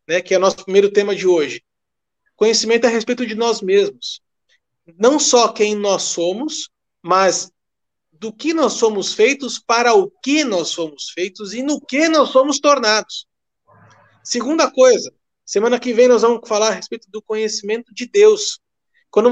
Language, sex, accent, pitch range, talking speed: Portuguese, male, Brazilian, 195-260 Hz, 165 wpm